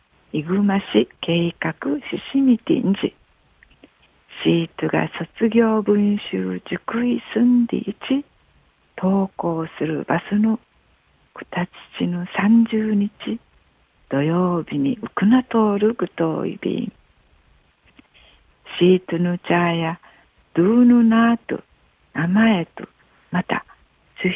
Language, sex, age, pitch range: Japanese, female, 50-69, 165-225 Hz